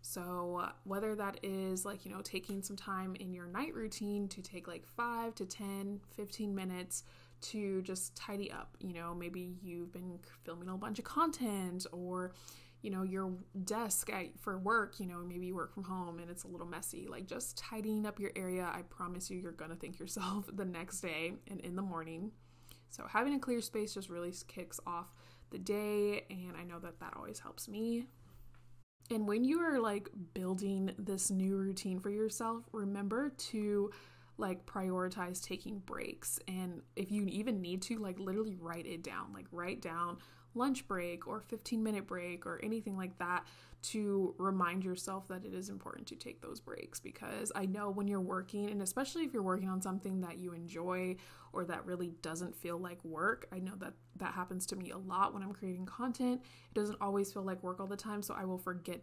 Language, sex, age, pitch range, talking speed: English, female, 20-39, 180-210 Hz, 200 wpm